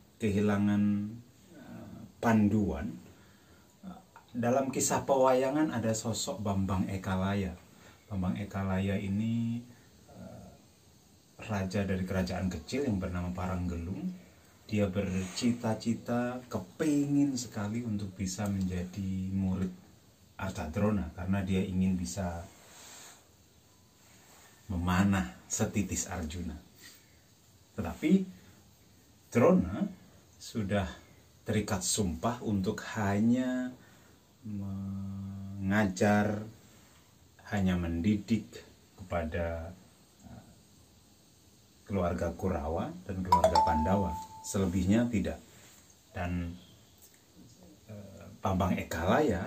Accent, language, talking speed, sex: native, Indonesian, 70 wpm, male